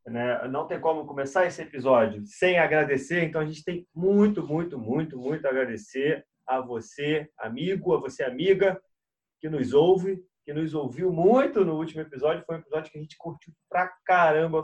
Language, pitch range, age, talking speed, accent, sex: Portuguese, 140-180 Hz, 30-49, 175 wpm, Brazilian, male